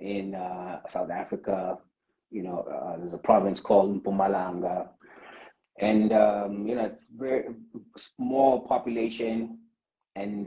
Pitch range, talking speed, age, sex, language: 100-120 Hz, 120 wpm, 30-49, male, English